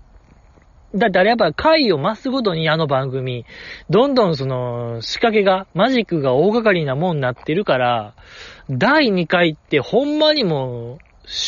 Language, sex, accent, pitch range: Japanese, male, native, 130-205 Hz